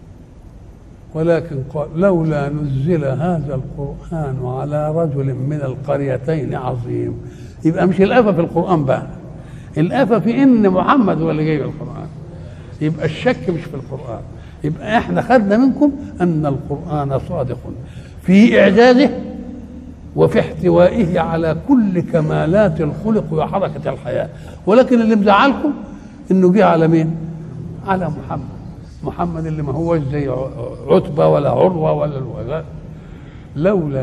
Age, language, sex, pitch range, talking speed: 60-79, Arabic, male, 135-180 Hz, 120 wpm